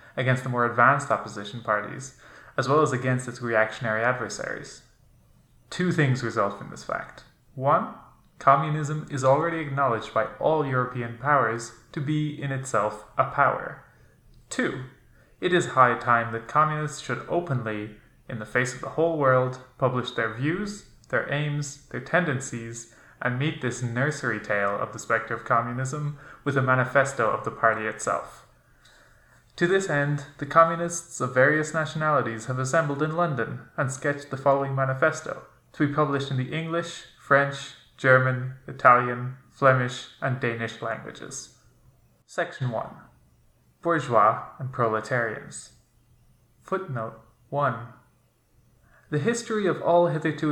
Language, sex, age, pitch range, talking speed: English, male, 20-39, 120-145 Hz, 140 wpm